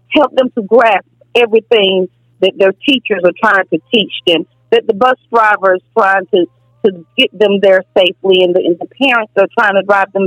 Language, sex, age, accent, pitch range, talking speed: English, female, 40-59, American, 170-235 Hz, 205 wpm